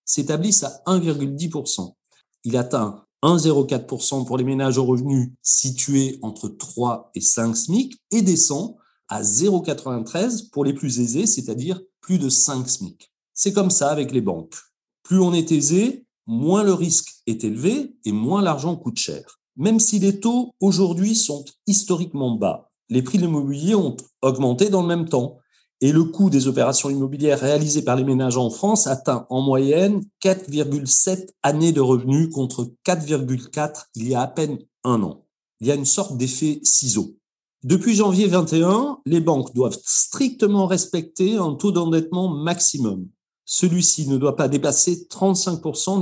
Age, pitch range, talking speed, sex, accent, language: 40-59, 130-185 Hz, 160 wpm, male, French, French